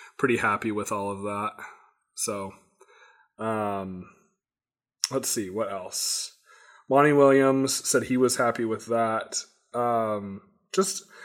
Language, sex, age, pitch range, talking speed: English, male, 20-39, 100-125 Hz, 115 wpm